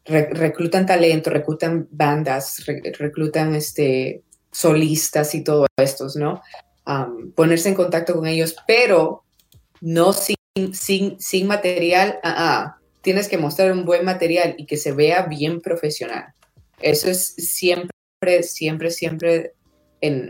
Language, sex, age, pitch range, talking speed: Spanish, female, 20-39, 150-180 Hz, 125 wpm